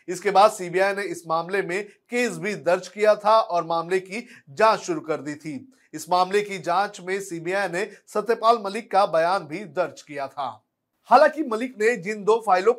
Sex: male